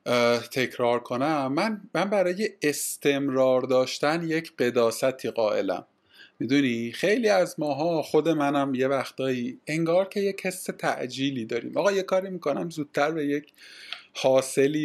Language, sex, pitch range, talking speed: Persian, male, 125-155 Hz, 130 wpm